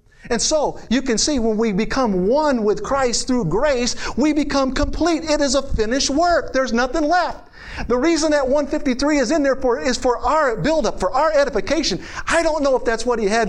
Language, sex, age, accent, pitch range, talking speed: English, male, 50-69, American, 215-295 Hz, 210 wpm